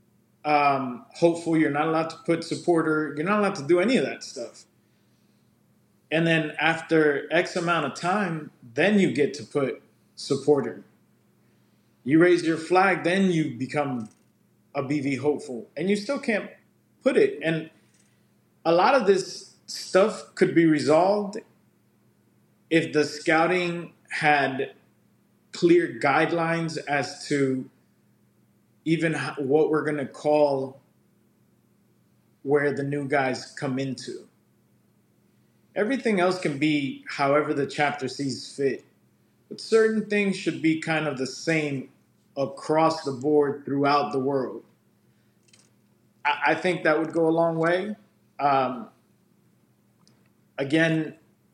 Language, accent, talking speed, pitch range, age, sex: English, American, 125 wpm, 145-170 Hz, 30-49, male